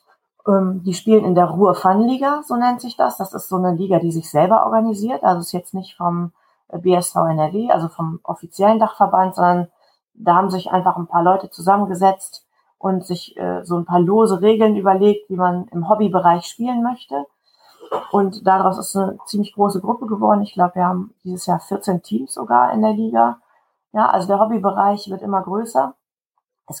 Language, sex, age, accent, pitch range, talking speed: German, female, 30-49, German, 175-210 Hz, 185 wpm